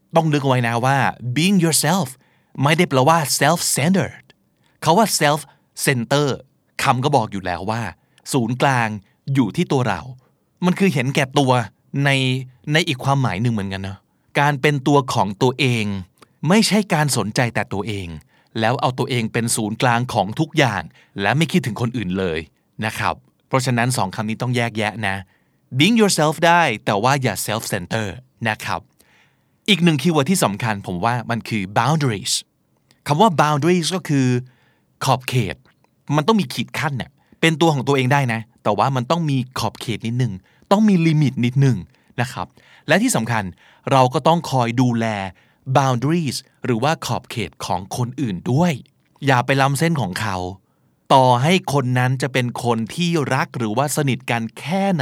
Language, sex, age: Thai, male, 20-39